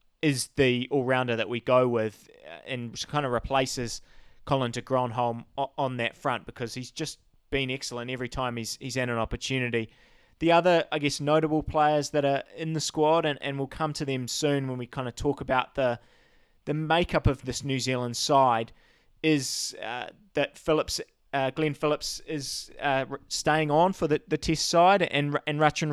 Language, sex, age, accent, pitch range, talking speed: English, male, 20-39, Australian, 130-155 Hz, 190 wpm